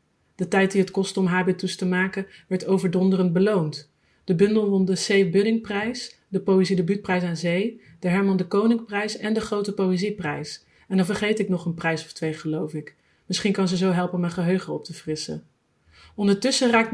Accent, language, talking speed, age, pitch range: Dutch, Dutch, 190 wpm, 40-59, 175-205 Hz